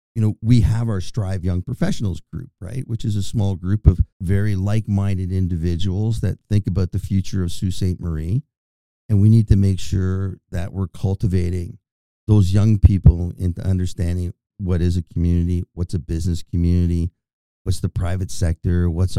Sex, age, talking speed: male, 50-69, 170 wpm